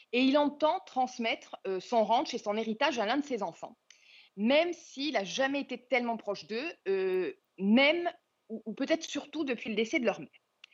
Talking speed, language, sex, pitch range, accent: 195 wpm, French, female, 205-260 Hz, French